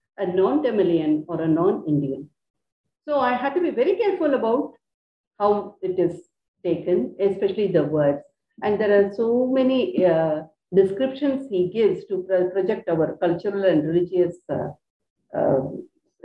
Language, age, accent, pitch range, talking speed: English, 50-69, Indian, 185-260 Hz, 140 wpm